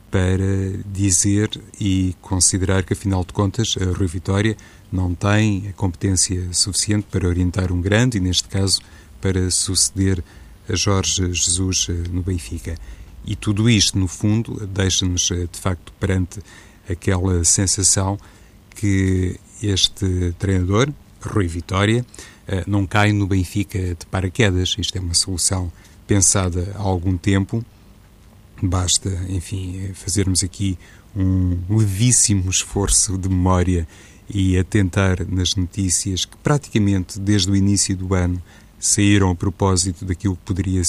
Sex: male